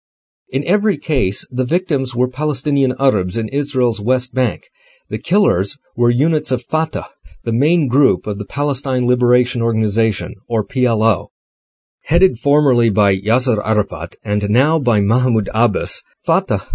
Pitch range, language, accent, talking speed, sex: 115-145 Hz, English, American, 140 wpm, male